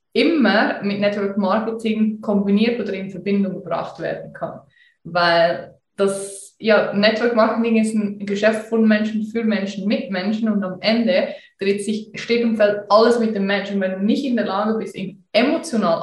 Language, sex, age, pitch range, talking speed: German, female, 20-39, 195-230 Hz, 170 wpm